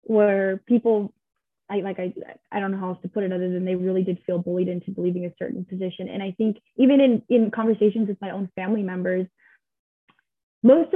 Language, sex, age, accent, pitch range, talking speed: English, female, 10-29, American, 195-230 Hz, 210 wpm